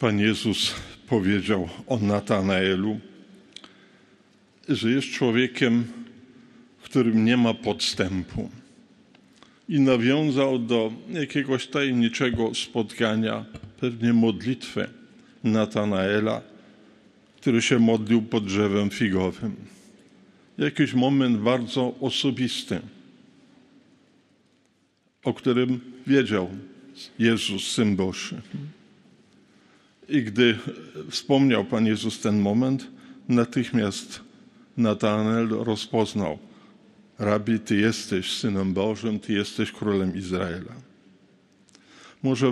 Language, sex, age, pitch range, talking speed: Polish, male, 50-69, 110-135 Hz, 80 wpm